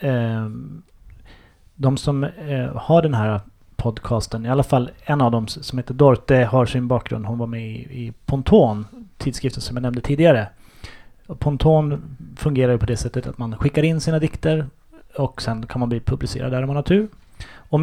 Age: 30-49